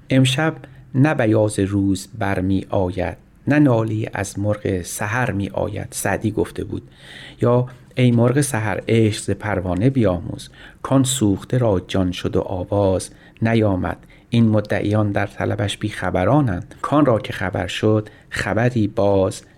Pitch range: 100-130 Hz